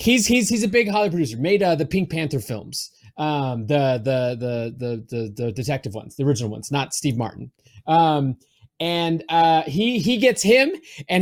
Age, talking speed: 30-49, 195 wpm